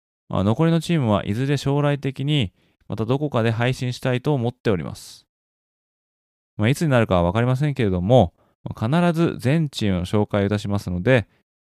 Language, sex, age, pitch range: Japanese, male, 20-39, 95-135 Hz